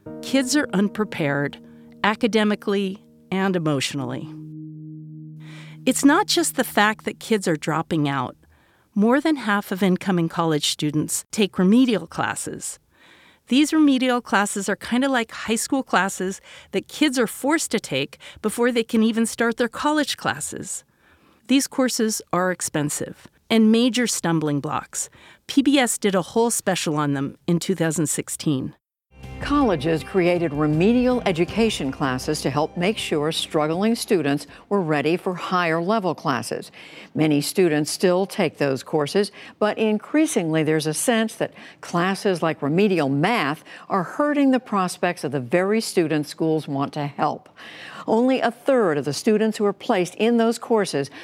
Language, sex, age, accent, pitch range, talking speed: English, female, 50-69, American, 155-225 Hz, 145 wpm